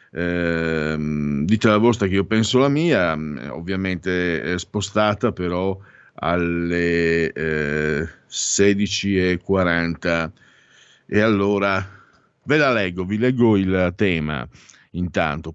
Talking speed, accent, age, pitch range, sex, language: 105 wpm, native, 50-69, 85-115 Hz, male, Italian